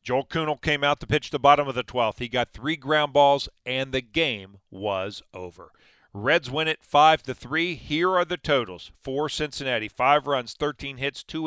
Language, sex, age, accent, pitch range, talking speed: English, male, 40-59, American, 110-145 Hz, 190 wpm